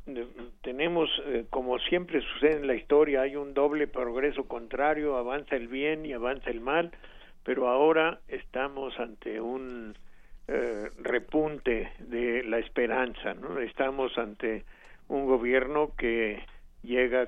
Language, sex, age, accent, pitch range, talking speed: Spanish, male, 60-79, Mexican, 115-135 Hz, 130 wpm